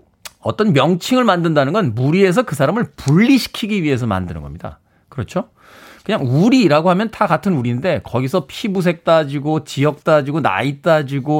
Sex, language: male, Korean